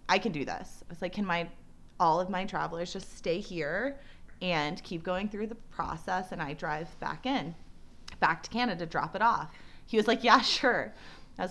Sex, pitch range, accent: female, 170-245 Hz, American